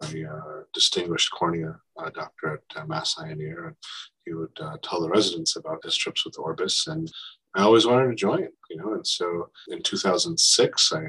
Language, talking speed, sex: English, 185 wpm, male